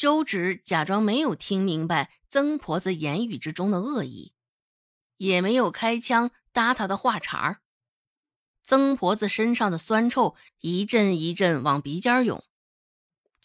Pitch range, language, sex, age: 160-240 Hz, Chinese, female, 20-39